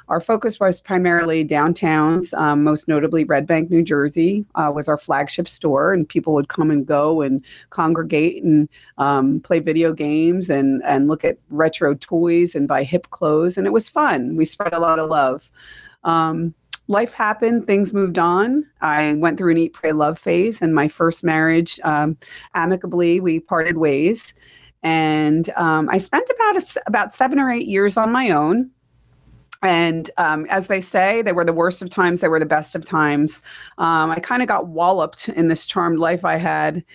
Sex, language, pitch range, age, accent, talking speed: female, English, 155-180 Hz, 30-49, American, 190 wpm